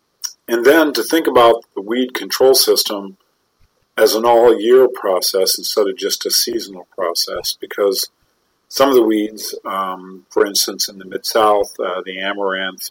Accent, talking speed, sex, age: American, 150 wpm, male, 50-69